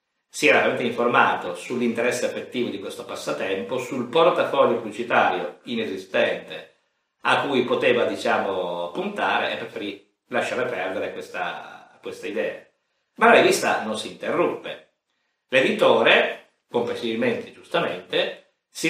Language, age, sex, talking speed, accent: Italian, 50-69, male, 110 wpm, native